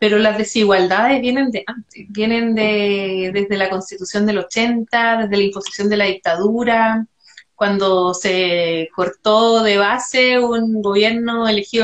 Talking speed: 130 wpm